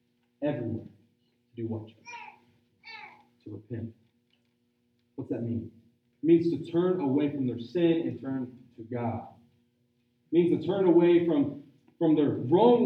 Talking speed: 145 wpm